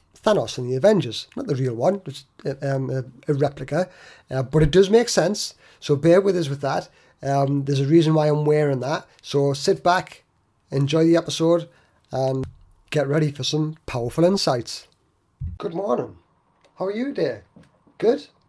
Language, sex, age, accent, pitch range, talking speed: English, male, 30-49, British, 140-175 Hz, 170 wpm